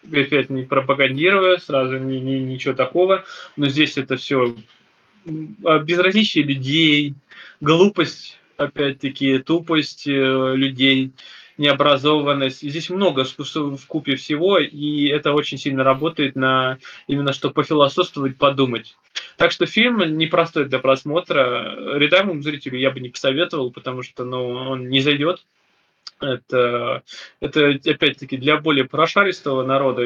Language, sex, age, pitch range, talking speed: Russian, male, 20-39, 130-155 Hz, 120 wpm